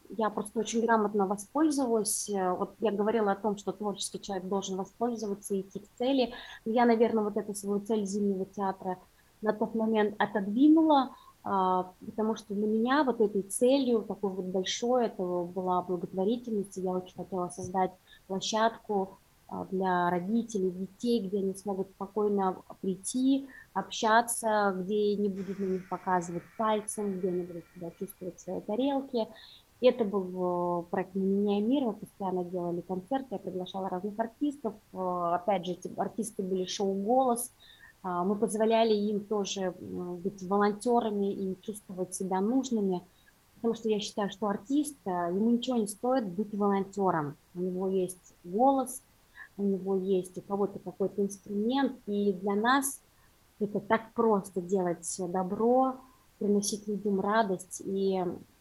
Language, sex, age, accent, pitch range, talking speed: Russian, female, 20-39, native, 190-225 Hz, 140 wpm